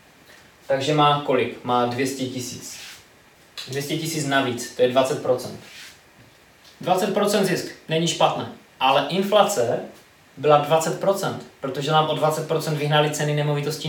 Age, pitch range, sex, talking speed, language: 20-39, 130-155 Hz, male, 115 wpm, Czech